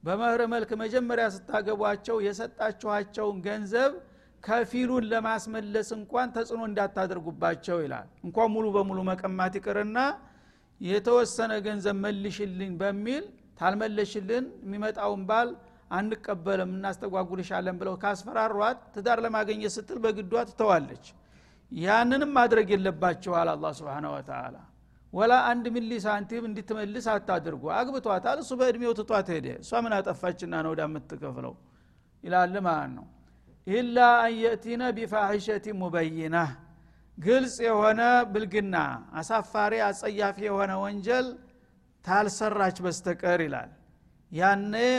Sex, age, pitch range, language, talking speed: male, 60-79, 185-230 Hz, Amharic, 105 wpm